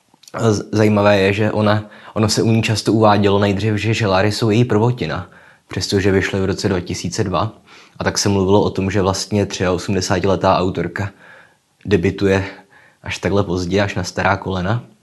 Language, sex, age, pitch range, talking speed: Czech, male, 20-39, 95-105 Hz, 155 wpm